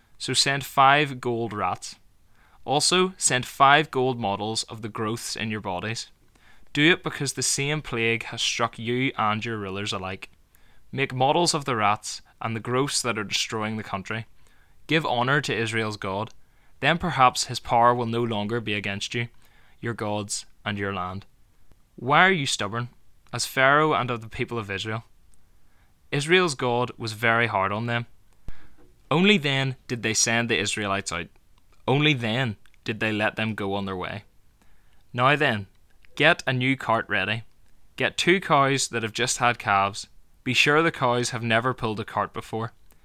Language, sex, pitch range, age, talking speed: English, male, 100-130 Hz, 10-29, 175 wpm